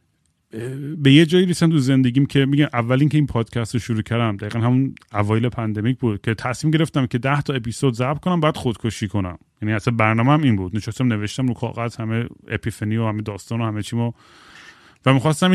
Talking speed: 205 wpm